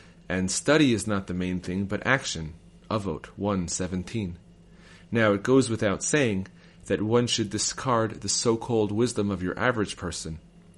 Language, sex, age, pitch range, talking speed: English, male, 30-49, 90-115 Hz, 150 wpm